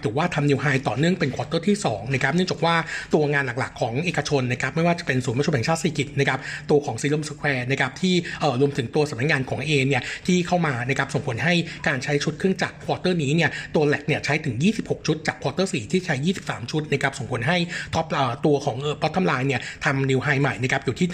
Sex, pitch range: male, 140-170 Hz